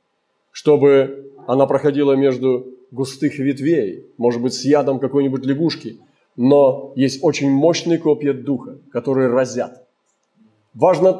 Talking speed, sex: 115 wpm, male